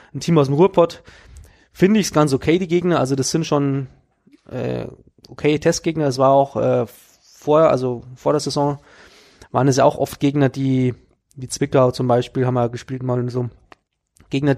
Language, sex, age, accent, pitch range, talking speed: German, male, 20-39, German, 125-150 Hz, 195 wpm